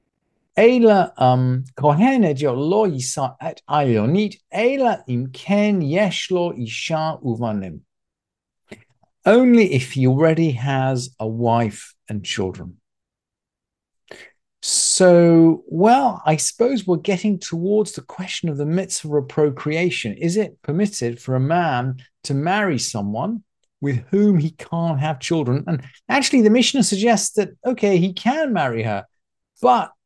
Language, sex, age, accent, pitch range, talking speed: English, male, 50-69, British, 130-200 Hz, 100 wpm